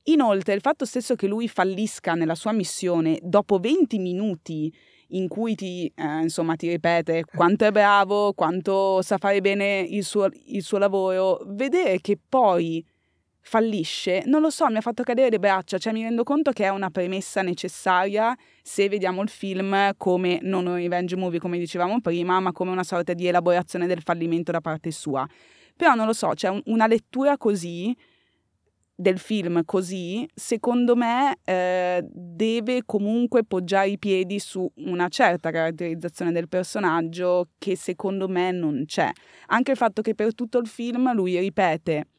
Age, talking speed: 20-39, 170 wpm